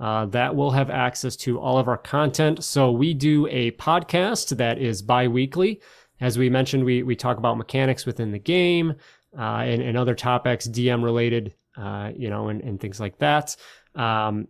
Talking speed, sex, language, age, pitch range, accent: 180 wpm, male, English, 30-49, 120-140 Hz, American